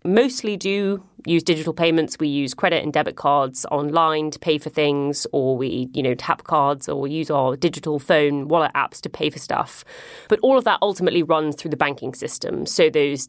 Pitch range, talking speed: 145-175 Hz, 210 wpm